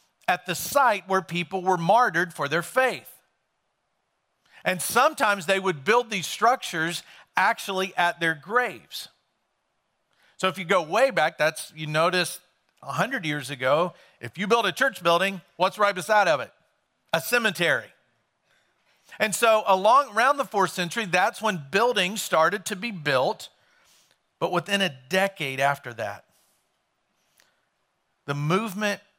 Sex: male